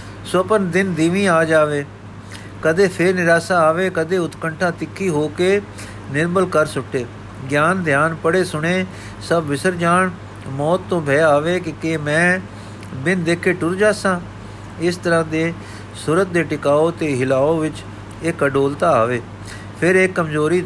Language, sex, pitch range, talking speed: Punjabi, male, 130-170 Hz, 150 wpm